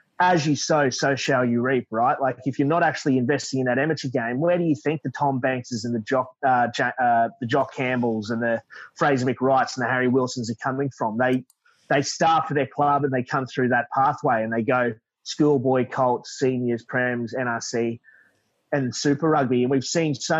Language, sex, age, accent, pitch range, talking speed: English, male, 30-49, Australian, 125-145 Hz, 210 wpm